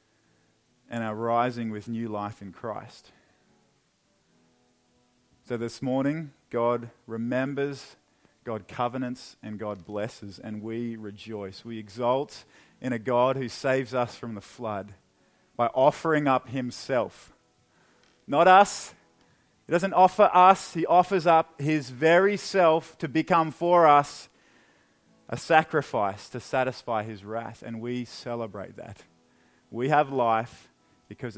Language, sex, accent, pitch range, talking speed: English, male, Australian, 110-145 Hz, 125 wpm